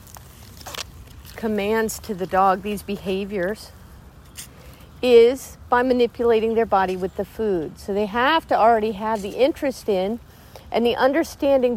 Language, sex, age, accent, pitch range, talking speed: English, female, 50-69, American, 195-260 Hz, 135 wpm